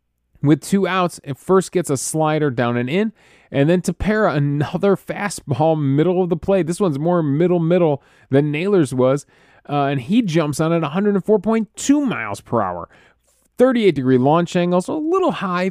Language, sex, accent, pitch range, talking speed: English, male, American, 130-180 Hz, 170 wpm